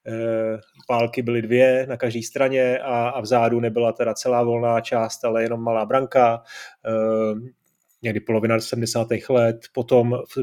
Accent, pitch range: native, 120-140 Hz